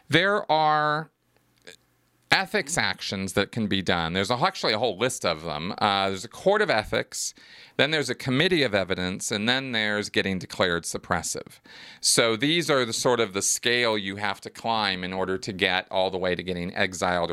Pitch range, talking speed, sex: 100-130 Hz, 190 wpm, male